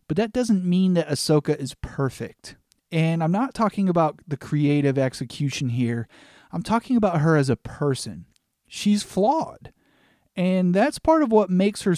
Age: 30-49